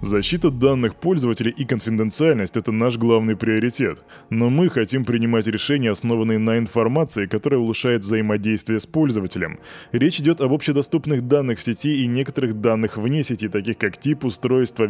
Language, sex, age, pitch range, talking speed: Russian, male, 20-39, 105-140 Hz, 155 wpm